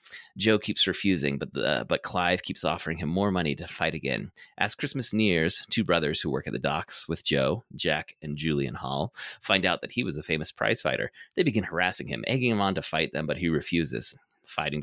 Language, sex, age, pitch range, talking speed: English, male, 30-49, 85-110 Hz, 220 wpm